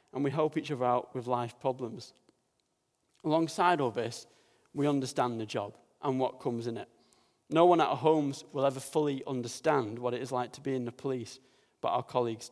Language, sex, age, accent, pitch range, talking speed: English, male, 30-49, British, 120-155 Hz, 200 wpm